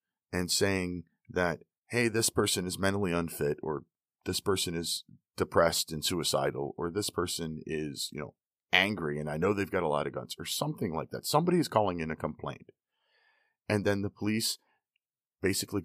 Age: 40-59